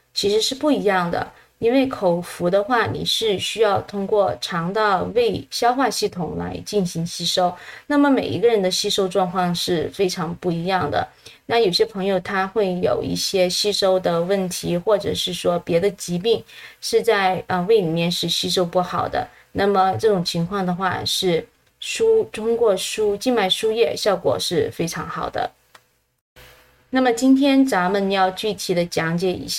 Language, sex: English, female